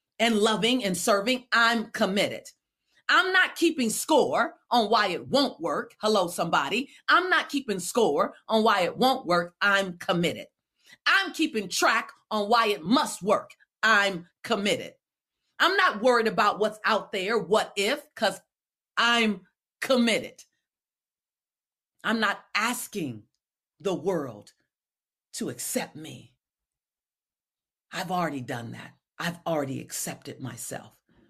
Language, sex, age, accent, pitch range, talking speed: English, female, 40-59, American, 170-235 Hz, 125 wpm